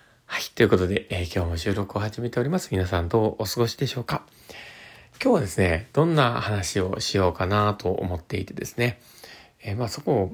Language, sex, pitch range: Japanese, male, 100-140 Hz